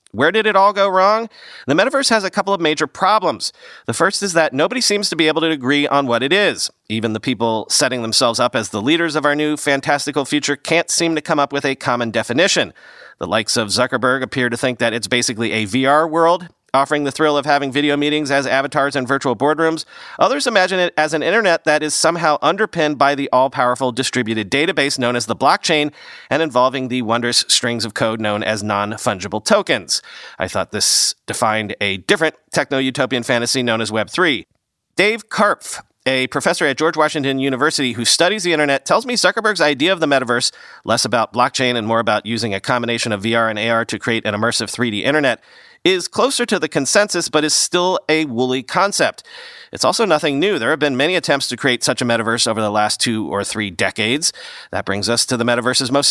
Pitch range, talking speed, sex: 120-160 Hz, 210 wpm, male